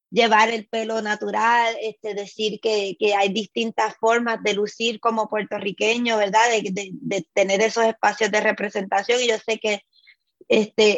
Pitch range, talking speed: 205-235 Hz, 160 wpm